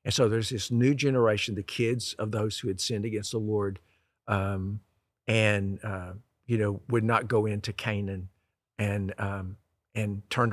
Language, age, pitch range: English, 50-69, 100-120 Hz